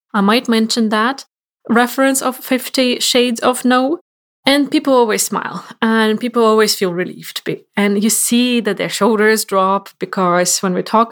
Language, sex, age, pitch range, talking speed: English, female, 20-39, 185-245 Hz, 160 wpm